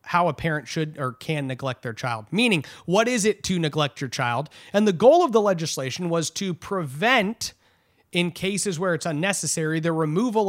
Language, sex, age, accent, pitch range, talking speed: English, male, 30-49, American, 140-205 Hz, 190 wpm